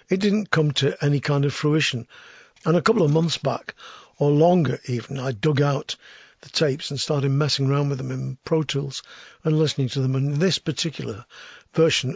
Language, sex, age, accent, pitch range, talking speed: English, male, 50-69, British, 135-160 Hz, 190 wpm